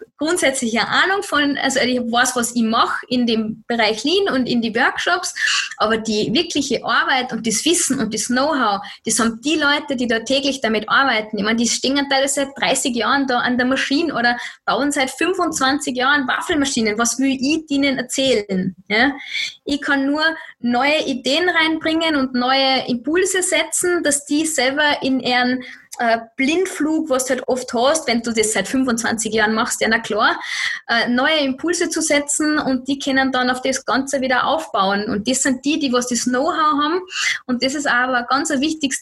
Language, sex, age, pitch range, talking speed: German, female, 20-39, 235-285 Hz, 190 wpm